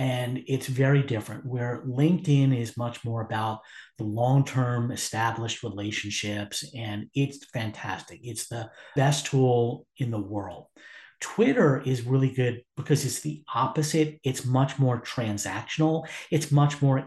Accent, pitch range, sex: American, 120-145 Hz, male